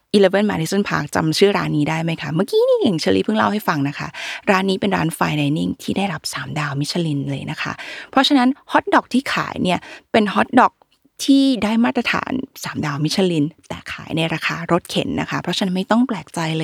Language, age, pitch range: Thai, 20-39, 155-215 Hz